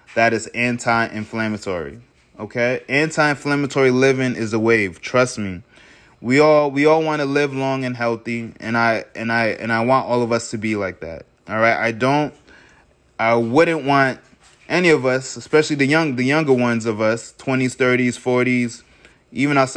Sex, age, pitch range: male, 20-39, 115-135 Hz